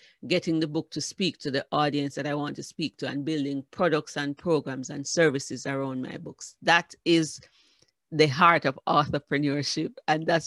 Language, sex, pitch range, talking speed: English, female, 145-175 Hz, 185 wpm